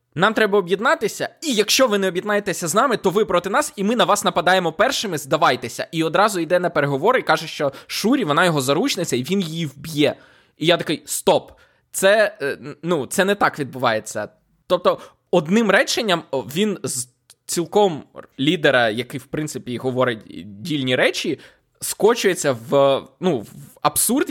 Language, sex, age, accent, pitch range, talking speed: Ukrainian, male, 20-39, native, 135-195 Hz, 160 wpm